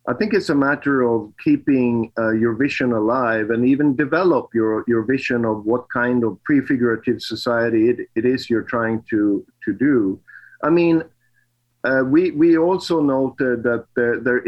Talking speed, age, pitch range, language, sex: 170 wpm, 50-69, 115-140 Hz, English, male